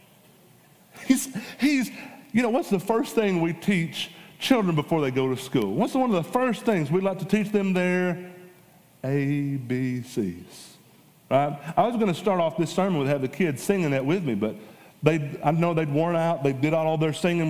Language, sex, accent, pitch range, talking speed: English, male, American, 140-185 Hz, 200 wpm